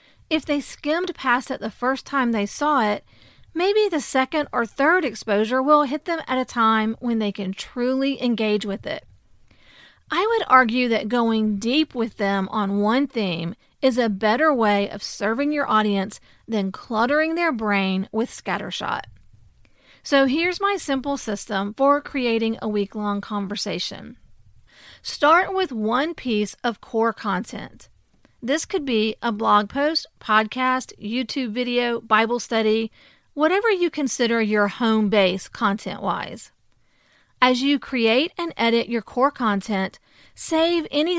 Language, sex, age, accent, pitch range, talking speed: English, female, 40-59, American, 215-285 Hz, 145 wpm